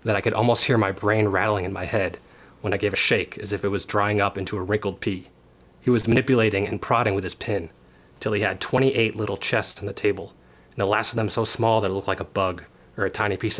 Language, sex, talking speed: English, male, 265 wpm